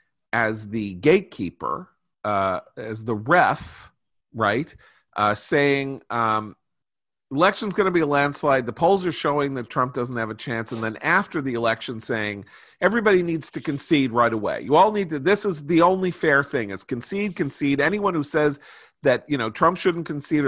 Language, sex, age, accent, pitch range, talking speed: English, male, 40-59, American, 115-165 Hz, 180 wpm